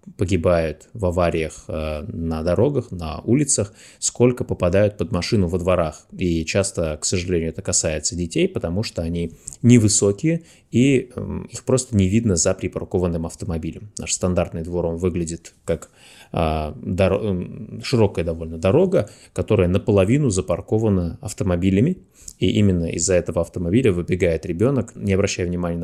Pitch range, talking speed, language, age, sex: 85-105 Hz, 140 wpm, Russian, 20-39, male